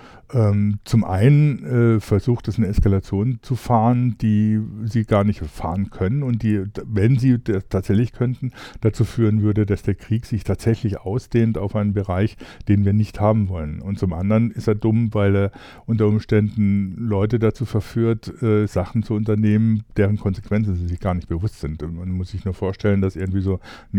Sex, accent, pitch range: male, German, 95-110 Hz